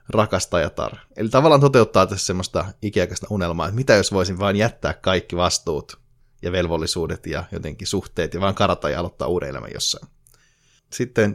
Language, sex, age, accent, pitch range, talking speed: Finnish, male, 30-49, native, 85-105 Hz, 160 wpm